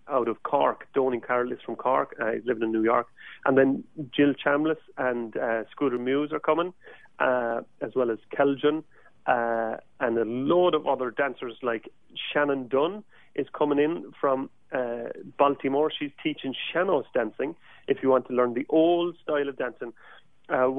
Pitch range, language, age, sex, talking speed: 125-150 Hz, English, 30-49, male, 175 wpm